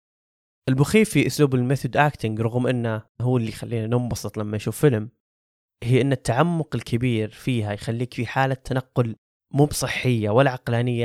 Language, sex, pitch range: Arabic, male, 110-135 Hz